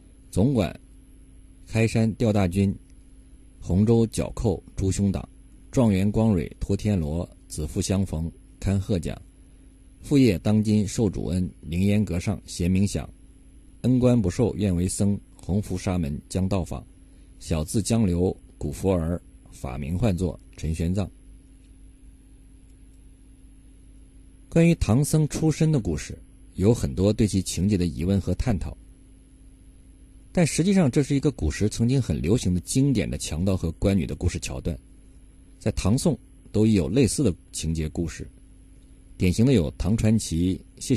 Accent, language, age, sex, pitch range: native, Chinese, 50-69, male, 85-110 Hz